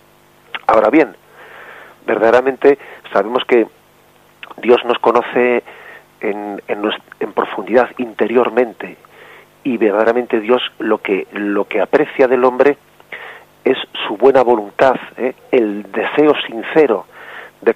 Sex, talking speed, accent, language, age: male, 110 wpm, Spanish, Spanish, 40-59